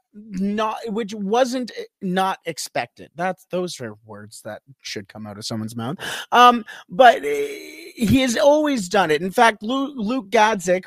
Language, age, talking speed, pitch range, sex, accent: English, 30-49, 150 wpm, 155-220 Hz, male, American